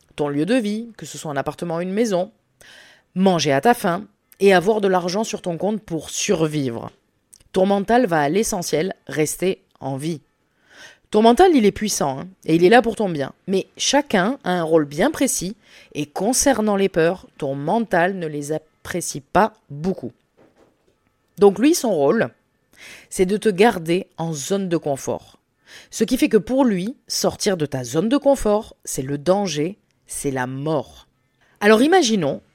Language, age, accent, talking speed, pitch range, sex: French, 20-39, French, 175 wpm, 160-235 Hz, female